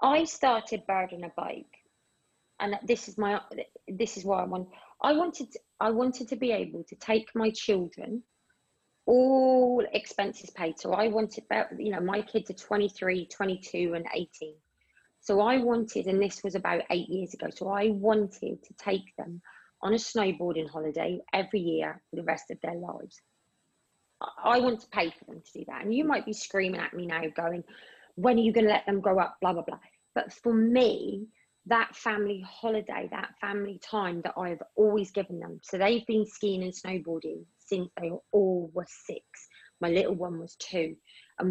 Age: 20-39